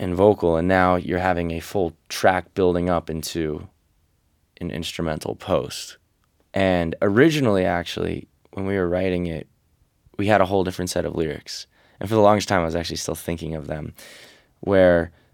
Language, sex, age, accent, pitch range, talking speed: English, male, 10-29, American, 85-95 Hz, 170 wpm